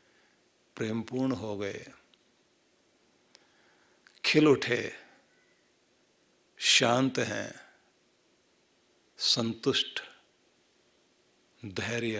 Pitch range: 110-150 Hz